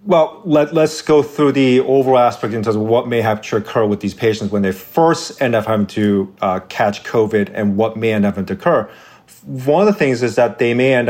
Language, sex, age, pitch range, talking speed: English, male, 30-49, 110-145 Hz, 250 wpm